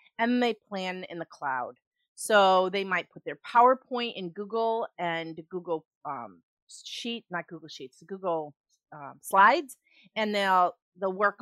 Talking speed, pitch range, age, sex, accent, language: 145 wpm, 165-215 Hz, 30-49, female, American, English